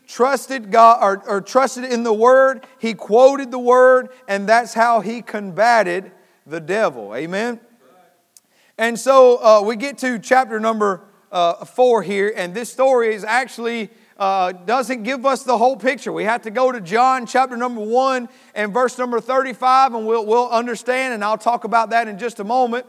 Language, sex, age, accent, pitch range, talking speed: English, male, 40-59, American, 215-260 Hz, 180 wpm